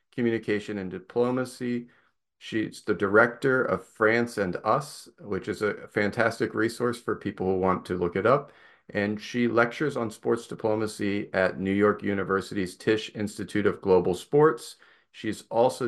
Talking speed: 150 wpm